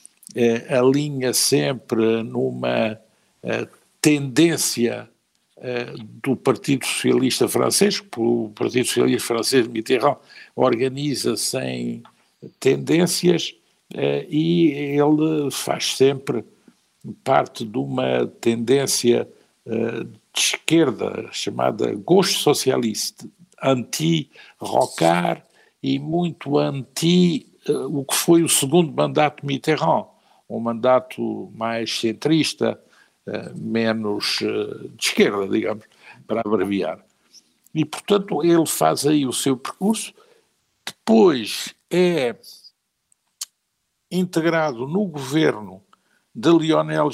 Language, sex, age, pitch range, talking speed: Portuguese, male, 60-79, 115-160 Hz, 85 wpm